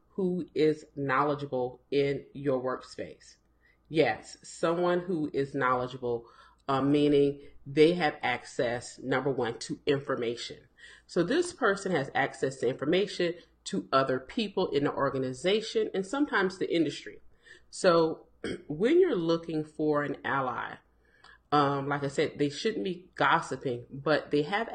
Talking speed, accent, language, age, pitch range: 135 wpm, American, English, 40-59, 140-185 Hz